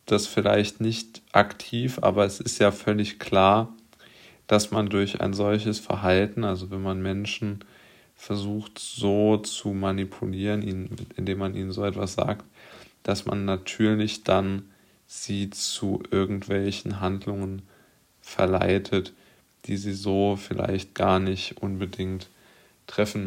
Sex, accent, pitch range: male, German, 95-105 Hz